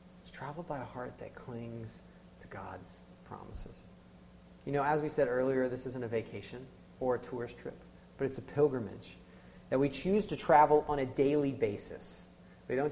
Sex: male